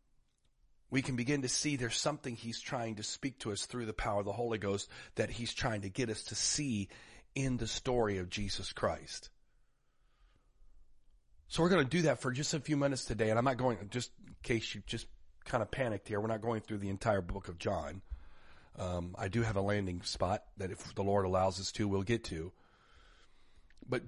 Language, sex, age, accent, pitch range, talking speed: English, male, 40-59, American, 100-125 Hz, 215 wpm